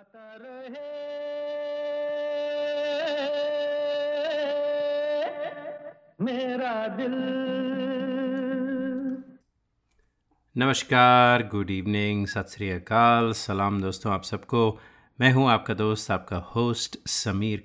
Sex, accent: male, native